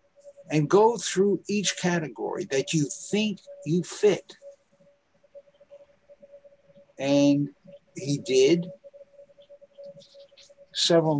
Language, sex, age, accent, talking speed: English, male, 60-79, American, 75 wpm